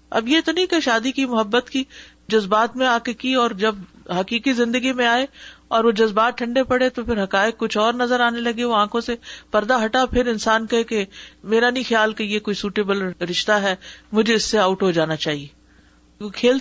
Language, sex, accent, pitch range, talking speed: English, female, Indian, 210-285 Hz, 215 wpm